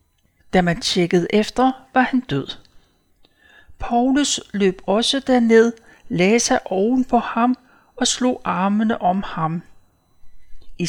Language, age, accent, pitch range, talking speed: Danish, 60-79, native, 185-245 Hz, 120 wpm